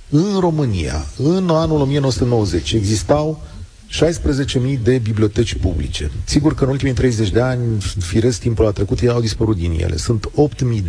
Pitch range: 100-140 Hz